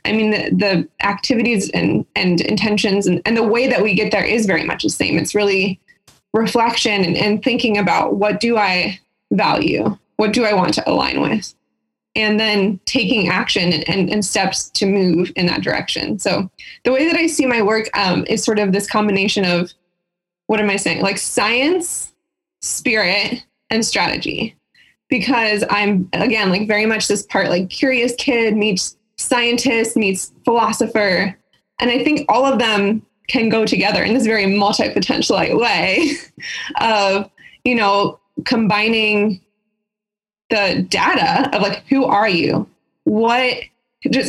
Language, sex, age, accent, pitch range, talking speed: English, female, 20-39, American, 200-240 Hz, 160 wpm